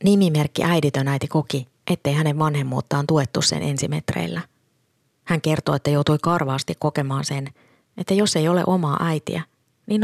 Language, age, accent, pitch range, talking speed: Finnish, 30-49, native, 145-165 Hz, 145 wpm